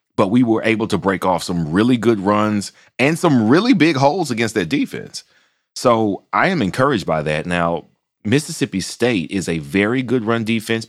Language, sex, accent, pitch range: English, male, American, 85-110 Hz